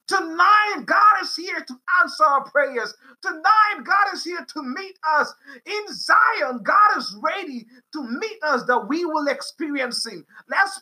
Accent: American